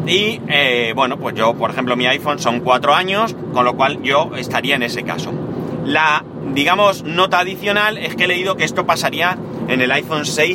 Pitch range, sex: 130-175 Hz, male